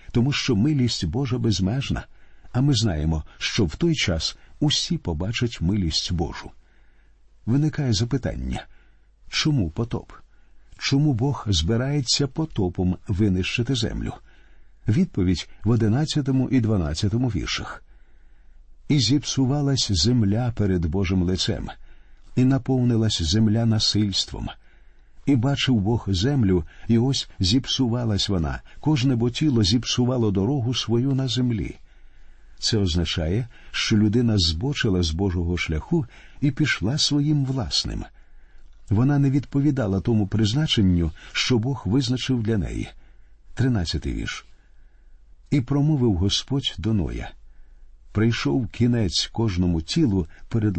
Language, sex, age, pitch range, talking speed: Ukrainian, male, 50-69, 95-130 Hz, 110 wpm